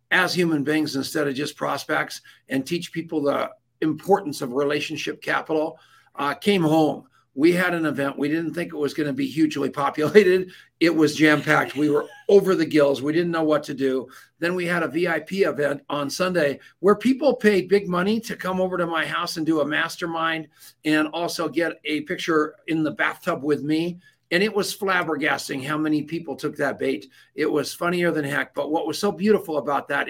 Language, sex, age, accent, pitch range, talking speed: English, male, 50-69, American, 145-170 Hz, 200 wpm